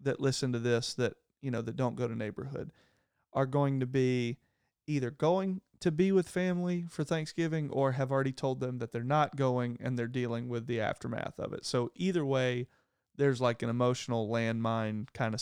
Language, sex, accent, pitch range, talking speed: English, male, American, 120-150 Hz, 200 wpm